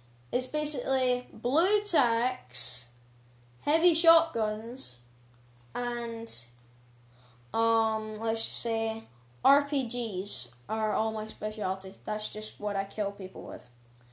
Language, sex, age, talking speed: English, female, 10-29, 100 wpm